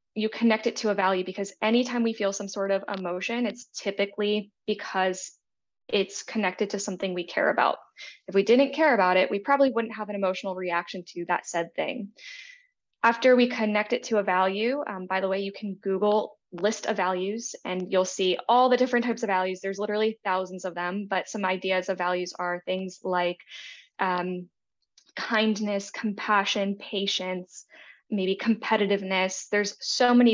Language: English